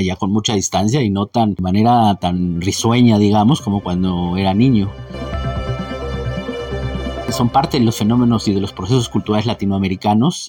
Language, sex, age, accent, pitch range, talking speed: Spanish, male, 40-59, Mexican, 100-120 Hz, 155 wpm